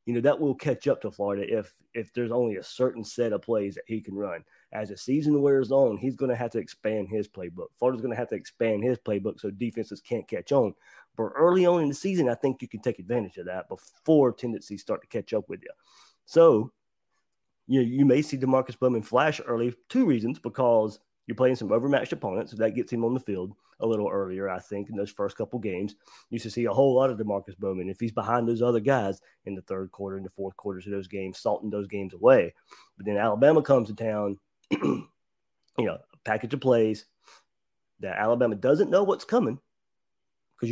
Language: English